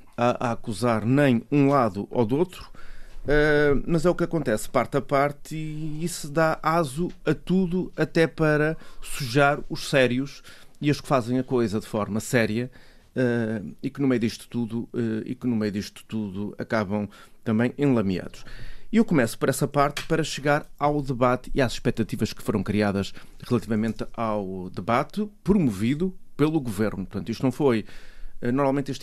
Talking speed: 165 wpm